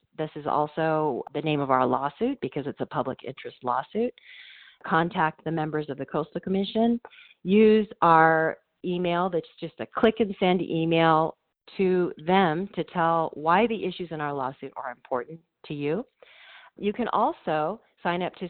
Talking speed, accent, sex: 165 wpm, American, female